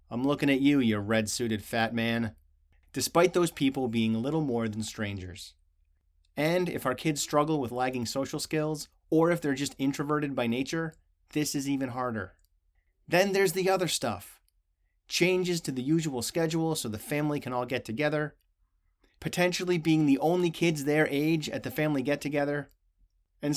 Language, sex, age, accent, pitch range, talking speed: English, male, 30-49, American, 110-160 Hz, 165 wpm